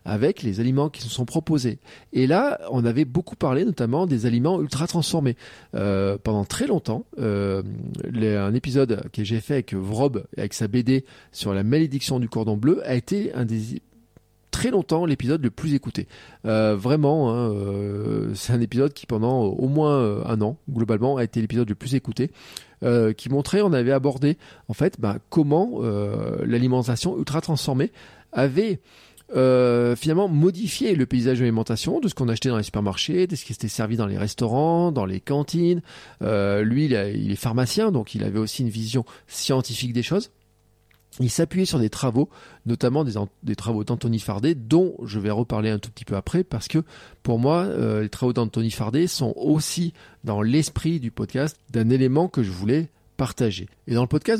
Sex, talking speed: male, 190 wpm